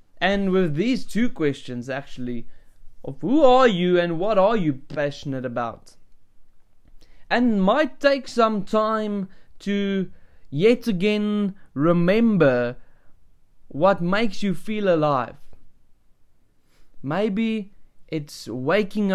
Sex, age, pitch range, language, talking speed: male, 20-39, 135-205 Hz, English, 105 wpm